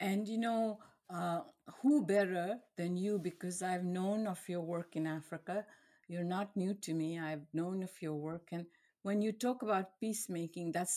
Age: 60-79